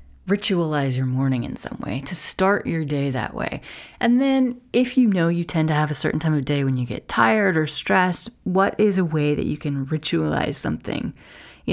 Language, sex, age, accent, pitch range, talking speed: English, female, 30-49, American, 140-185 Hz, 215 wpm